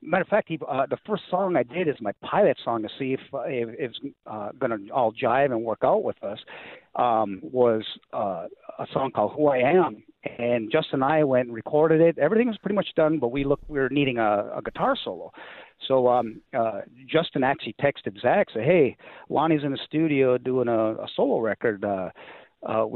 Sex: male